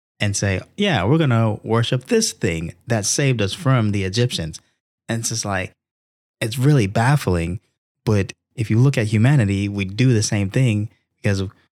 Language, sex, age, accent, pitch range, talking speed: English, male, 20-39, American, 100-130 Hz, 175 wpm